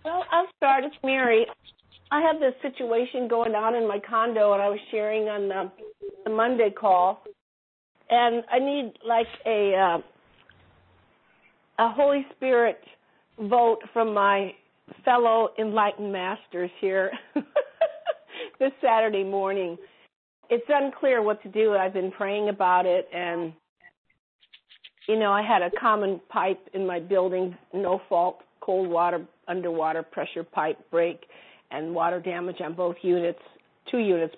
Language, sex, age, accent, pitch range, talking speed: English, female, 50-69, American, 175-230 Hz, 140 wpm